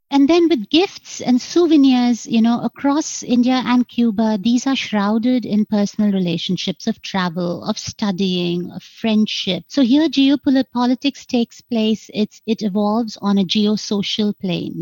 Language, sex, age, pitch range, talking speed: English, female, 50-69, 200-255 Hz, 140 wpm